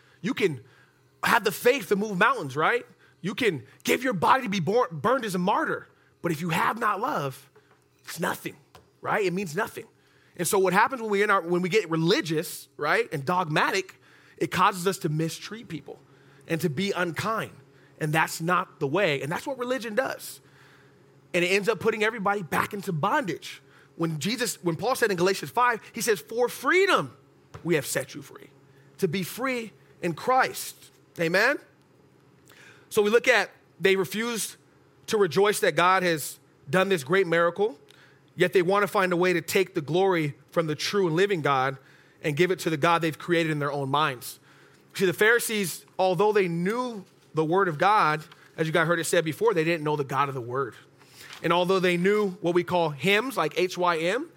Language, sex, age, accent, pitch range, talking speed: English, male, 30-49, American, 155-205 Hz, 195 wpm